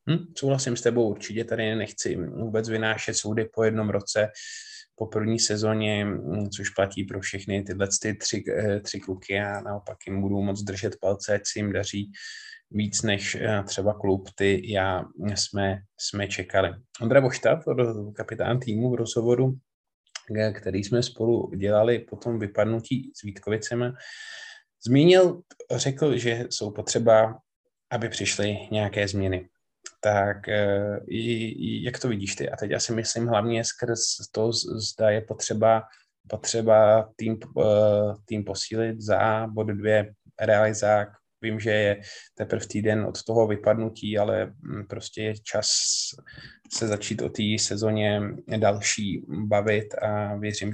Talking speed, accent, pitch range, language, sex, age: 130 wpm, native, 100-115 Hz, Czech, male, 20-39